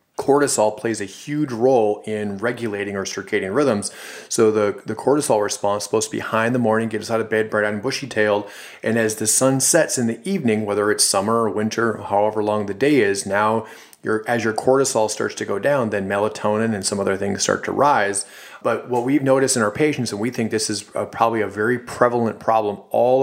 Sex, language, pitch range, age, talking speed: male, English, 105-120 Hz, 30-49, 220 wpm